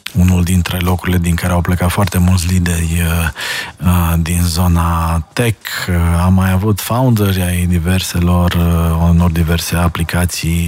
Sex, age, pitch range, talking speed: male, 20-39, 85-105 Hz, 125 wpm